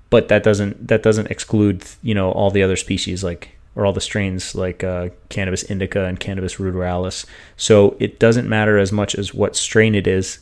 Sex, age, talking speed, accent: male, 30-49, 200 wpm, American